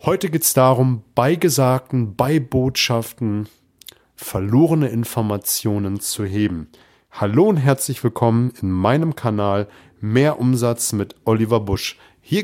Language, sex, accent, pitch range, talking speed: German, male, German, 110-135 Hz, 120 wpm